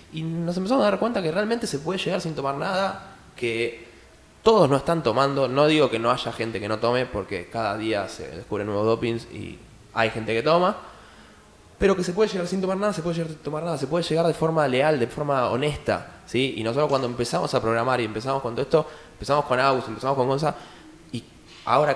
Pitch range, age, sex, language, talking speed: 115-155 Hz, 20-39, male, Spanish, 225 wpm